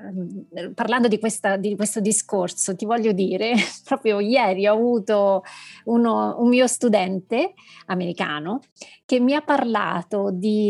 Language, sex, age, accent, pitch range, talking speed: Italian, female, 30-49, native, 200-260 Hz, 120 wpm